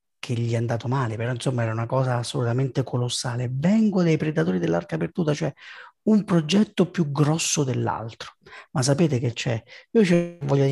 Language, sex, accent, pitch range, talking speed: Italian, male, native, 115-150 Hz, 160 wpm